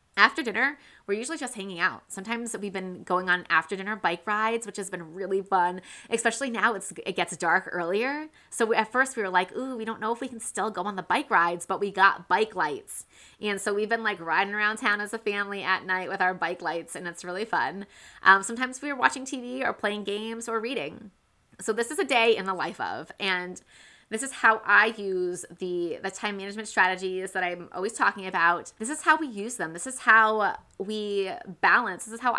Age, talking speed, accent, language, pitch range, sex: 20-39, 230 wpm, American, English, 185-235 Hz, female